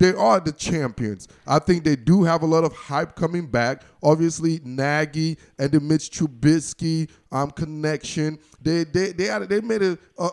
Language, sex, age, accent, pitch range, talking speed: English, male, 20-39, American, 140-170 Hz, 170 wpm